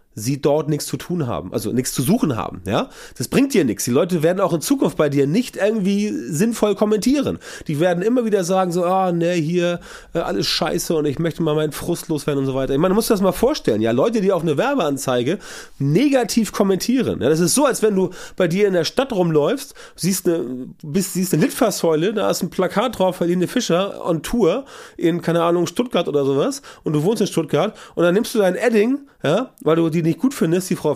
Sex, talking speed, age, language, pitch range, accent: male, 230 wpm, 30-49, German, 155-210 Hz, German